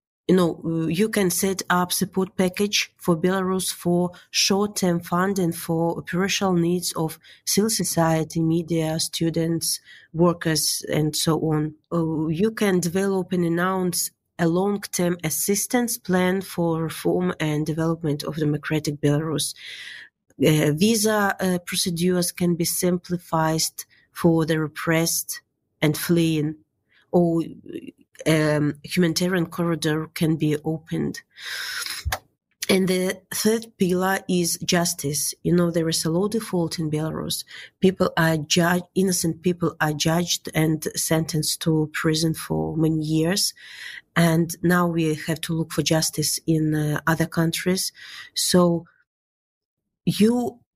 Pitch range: 160-185 Hz